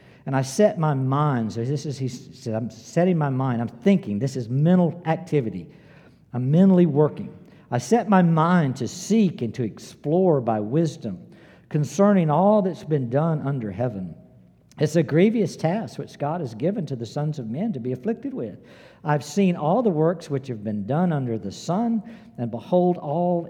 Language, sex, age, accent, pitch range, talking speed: English, male, 60-79, American, 125-190 Hz, 185 wpm